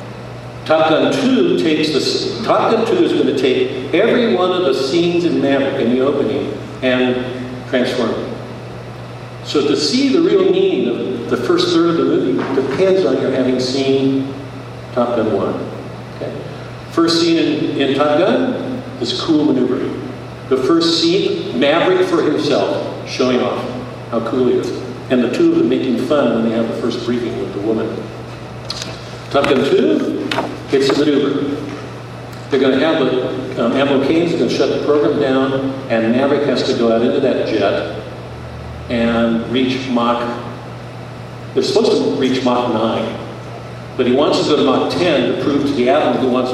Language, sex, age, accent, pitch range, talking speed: English, male, 50-69, American, 120-165 Hz, 175 wpm